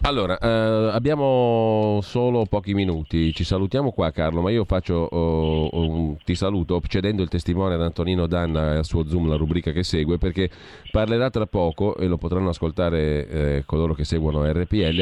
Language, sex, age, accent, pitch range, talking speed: Italian, male, 40-59, native, 80-100 Hz, 180 wpm